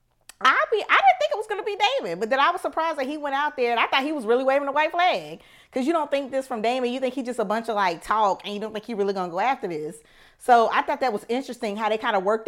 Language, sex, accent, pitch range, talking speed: English, female, American, 210-285 Hz, 330 wpm